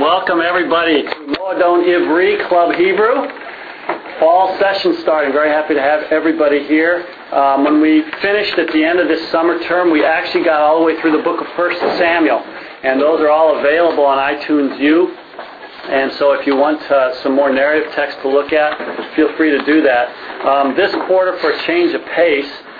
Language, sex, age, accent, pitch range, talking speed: English, male, 40-59, American, 135-170 Hz, 190 wpm